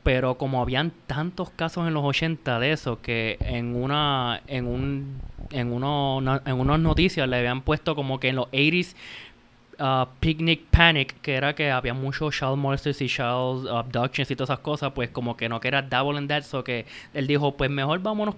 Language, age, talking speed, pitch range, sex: Spanish, 20-39, 200 wpm, 120-145 Hz, male